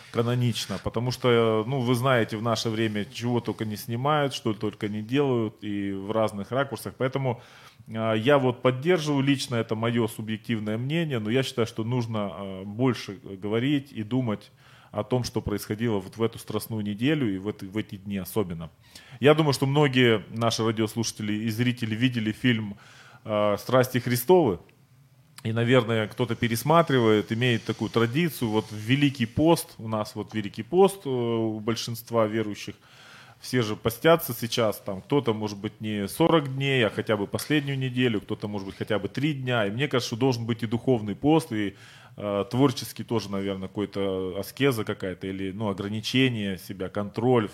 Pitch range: 105-130 Hz